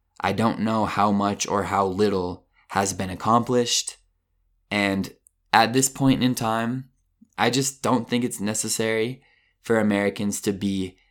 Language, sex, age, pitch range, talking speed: Italian, male, 20-39, 90-110 Hz, 145 wpm